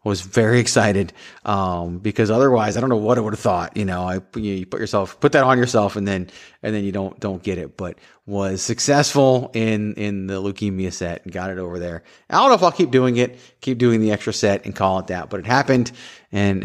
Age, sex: 30-49, male